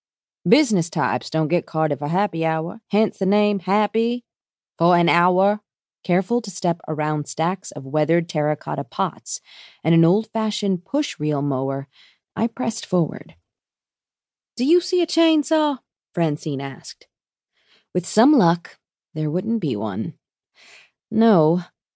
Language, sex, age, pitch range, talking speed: English, female, 30-49, 155-210 Hz, 130 wpm